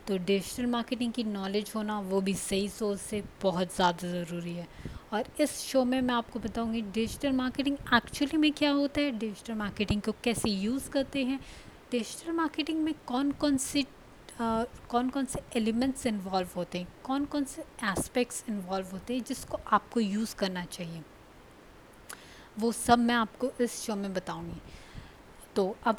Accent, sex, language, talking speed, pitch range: native, female, Hindi, 165 wpm, 195-245 Hz